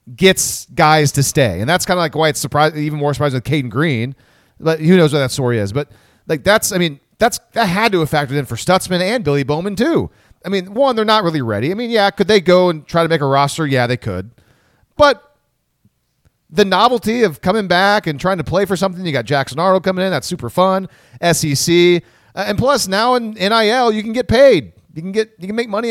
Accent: American